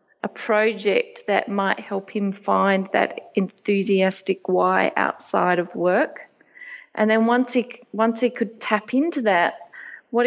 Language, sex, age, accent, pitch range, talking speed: English, female, 30-49, Australian, 195-230 Hz, 140 wpm